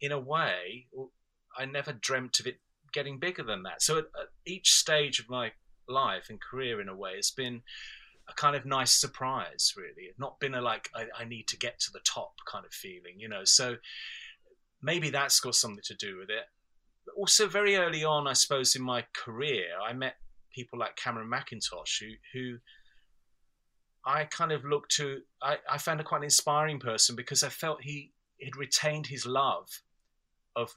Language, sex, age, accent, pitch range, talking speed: English, male, 30-49, British, 120-145 Hz, 190 wpm